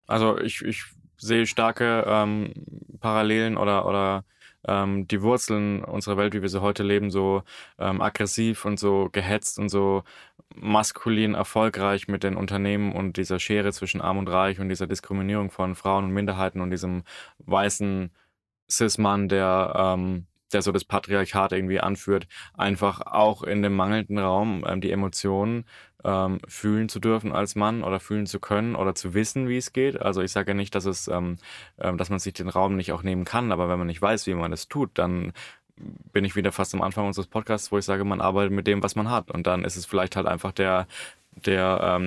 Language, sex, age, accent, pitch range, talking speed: German, male, 10-29, German, 95-105 Hz, 195 wpm